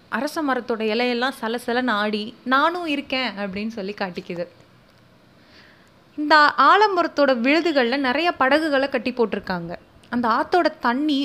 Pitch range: 225-285 Hz